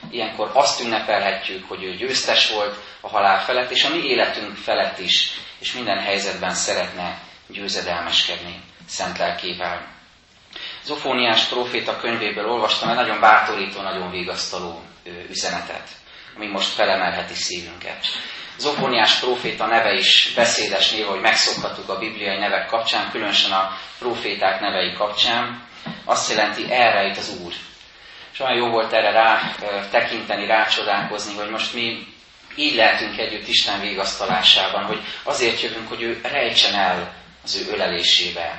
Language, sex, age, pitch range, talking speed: Hungarian, male, 30-49, 95-115 Hz, 130 wpm